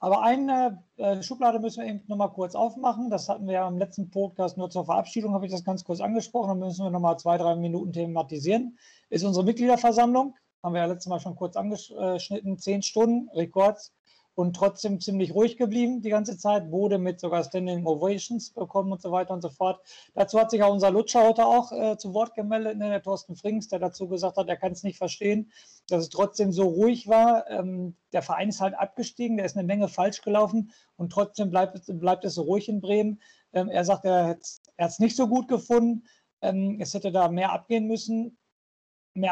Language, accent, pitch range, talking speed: German, German, 185-215 Hz, 210 wpm